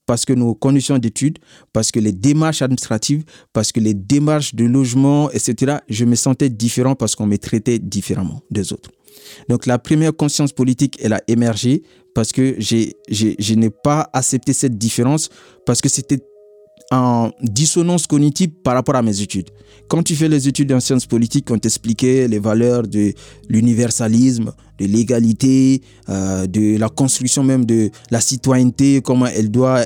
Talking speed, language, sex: 170 wpm, French, male